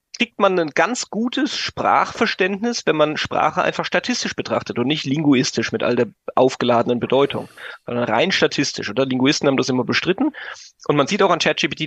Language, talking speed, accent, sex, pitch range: German, 175 wpm, German, male, 125-170 Hz